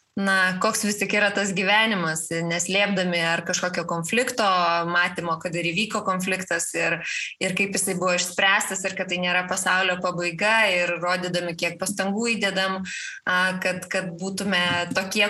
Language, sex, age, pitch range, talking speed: English, female, 20-39, 185-230 Hz, 140 wpm